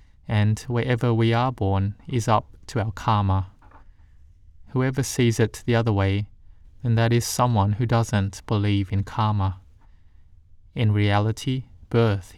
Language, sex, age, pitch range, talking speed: English, male, 20-39, 90-115 Hz, 135 wpm